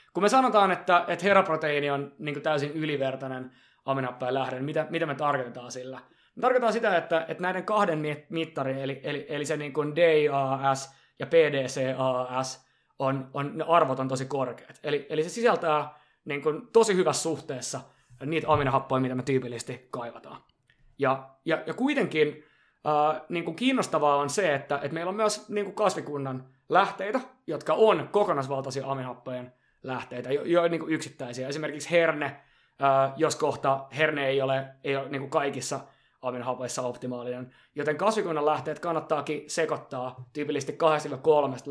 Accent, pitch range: native, 130-160 Hz